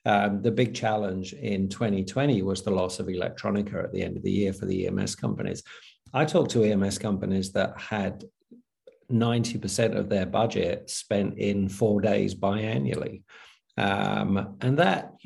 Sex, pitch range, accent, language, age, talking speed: male, 100-120 Hz, British, English, 50-69, 155 wpm